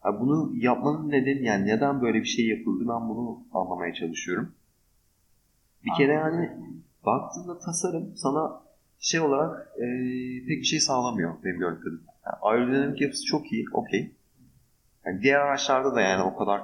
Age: 30-49